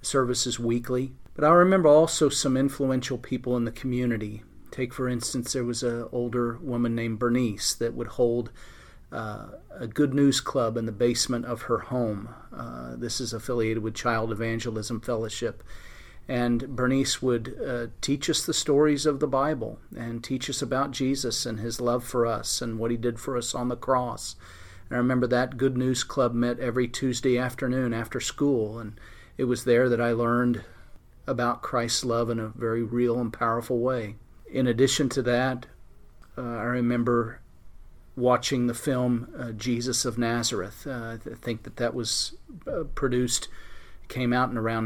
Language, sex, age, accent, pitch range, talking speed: English, male, 40-59, American, 115-130 Hz, 175 wpm